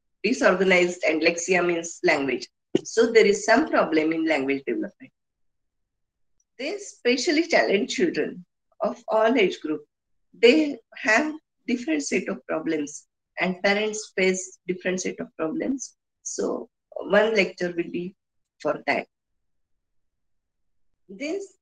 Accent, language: Indian, English